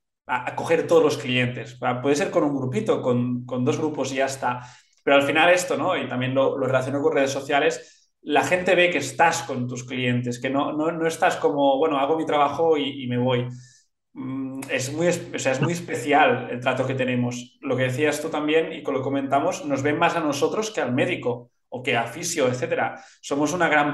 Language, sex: Spanish, male